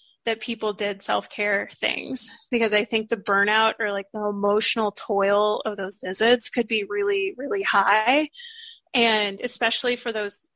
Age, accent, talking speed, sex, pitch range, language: 20-39, American, 155 wpm, female, 205-245 Hz, English